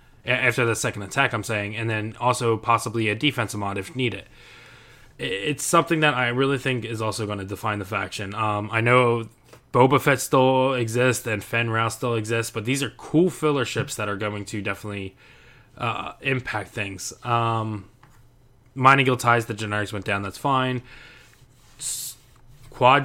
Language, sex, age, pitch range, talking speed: English, male, 20-39, 110-125 Hz, 165 wpm